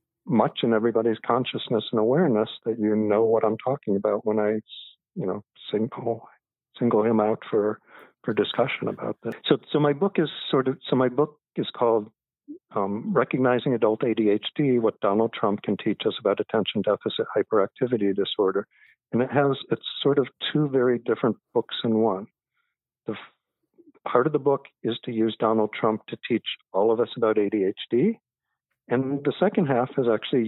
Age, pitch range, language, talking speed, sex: 50-69, 110-140 Hz, English, 175 wpm, male